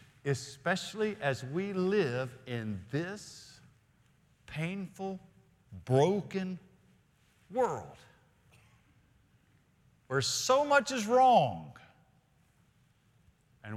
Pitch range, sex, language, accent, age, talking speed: 105-140 Hz, male, English, American, 50-69, 65 wpm